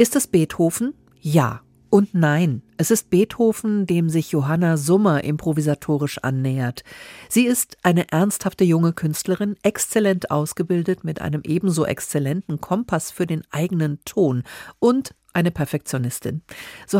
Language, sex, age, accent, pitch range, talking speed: German, female, 50-69, German, 145-195 Hz, 125 wpm